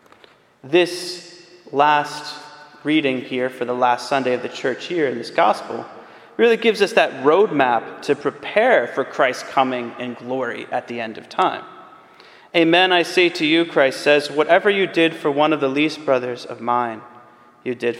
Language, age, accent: English, 30-49, American